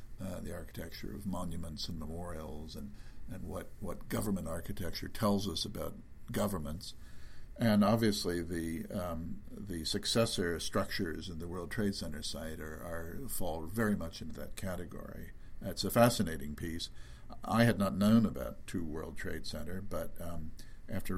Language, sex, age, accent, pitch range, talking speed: English, male, 60-79, American, 85-105 Hz, 155 wpm